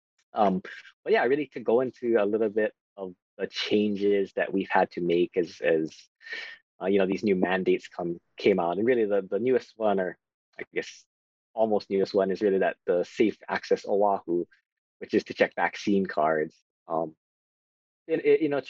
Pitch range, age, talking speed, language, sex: 90-115 Hz, 20-39, 195 wpm, English, male